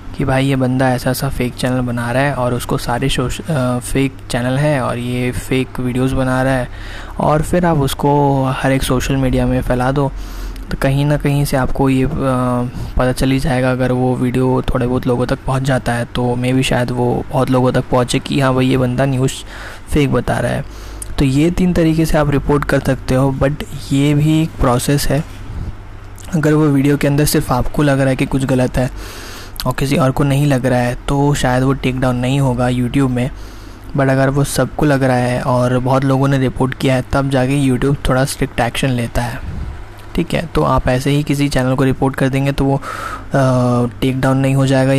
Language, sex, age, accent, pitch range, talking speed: Hindi, male, 20-39, native, 125-135 Hz, 220 wpm